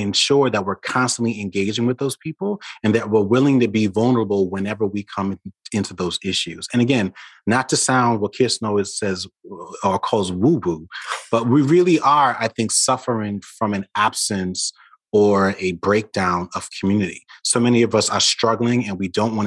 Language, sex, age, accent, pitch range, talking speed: English, male, 30-49, American, 95-115 Hz, 180 wpm